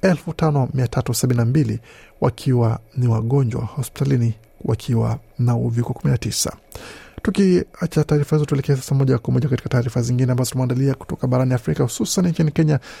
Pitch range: 120-145 Hz